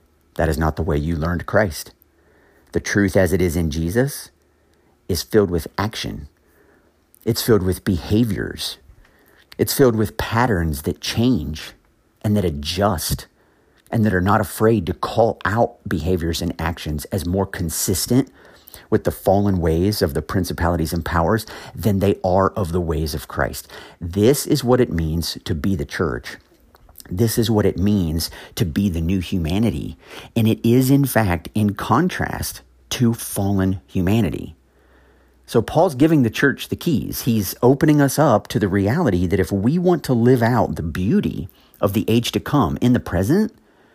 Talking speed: 170 wpm